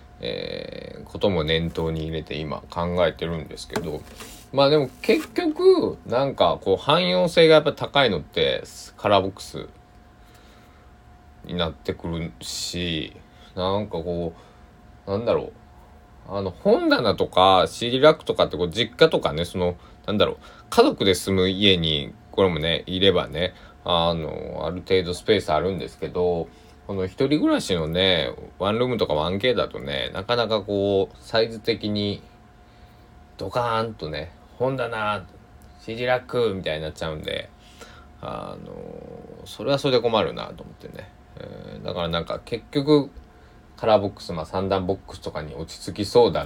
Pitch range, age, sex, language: 85-115 Hz, 20-39, male, Japanese